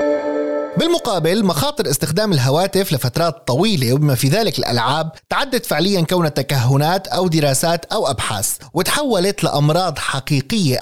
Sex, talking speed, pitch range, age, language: male, 115 wpm, 130-195 Hz, 30-49, Arabic